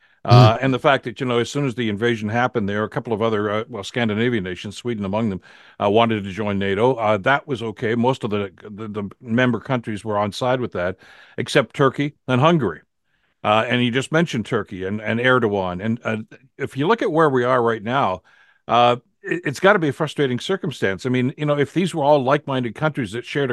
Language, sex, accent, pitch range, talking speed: English, male, American, 110-140 Hz, 230 wpm